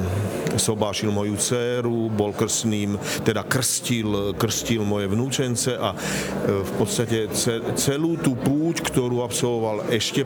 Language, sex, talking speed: Slovak, male, 110 wpm